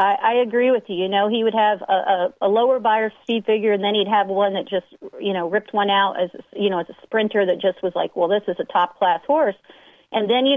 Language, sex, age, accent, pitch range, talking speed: English, female, 40-59, American, 185-215 Hz, 265 wpm